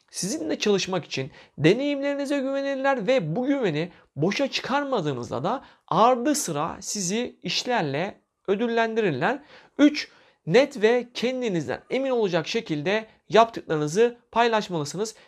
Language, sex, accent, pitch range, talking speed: Turkish, male, native, 185-250 Hz, 100 wpm